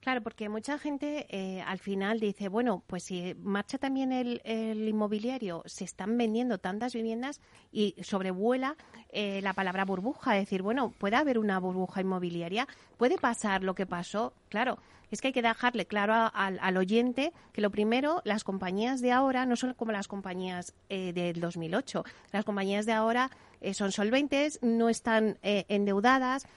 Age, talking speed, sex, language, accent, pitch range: 30-49, 175 wpm, female, Spanish, Spanish, 195-250 Hz